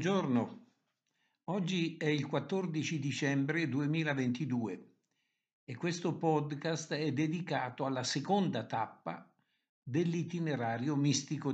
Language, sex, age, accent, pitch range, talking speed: Italian, male, 60-79, native, 140-190 Hz, 90 wpm